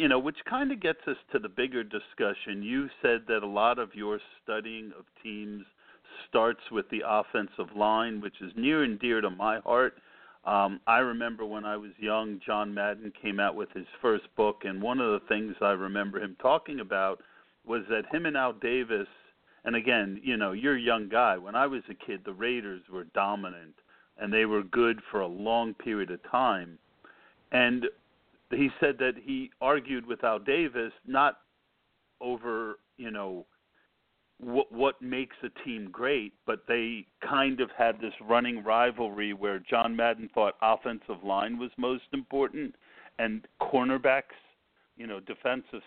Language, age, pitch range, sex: English, 50-69, 105-125 Hz, male